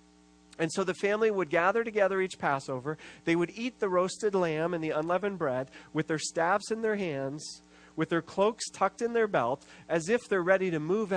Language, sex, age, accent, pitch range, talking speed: English, male, 40-59, American, 135-210 Hz, 205 wpm